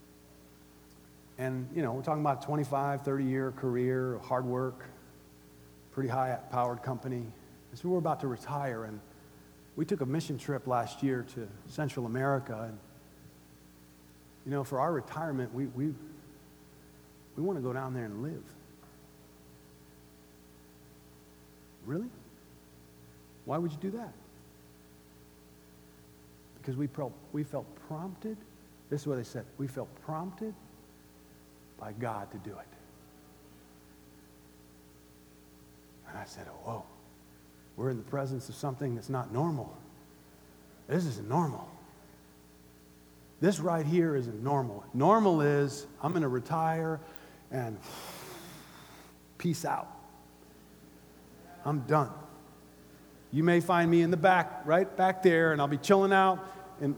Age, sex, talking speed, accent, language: 50-69, male, 125 wpm, American, English